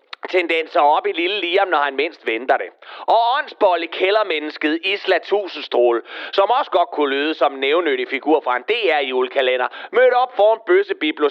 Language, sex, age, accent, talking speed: Danish, male, 30-49, native, 165 wpm